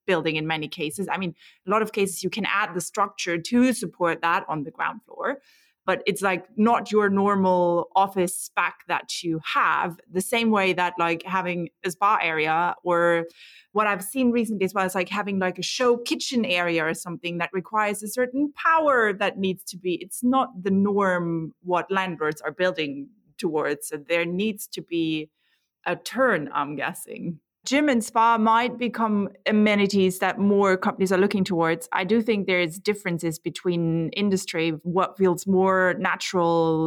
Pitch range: 170-210 Hz